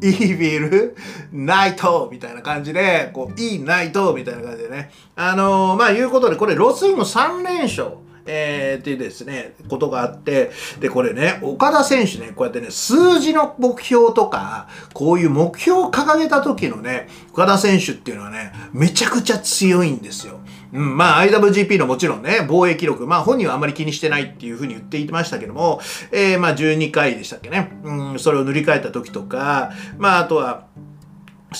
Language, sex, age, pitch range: Japanese, male, 40-59, 150-230 Hz